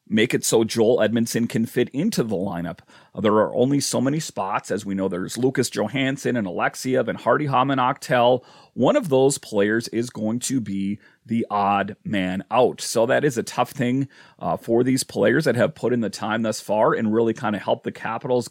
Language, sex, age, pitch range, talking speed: English, male, 30-49, 110-130 Hz, 210 wpm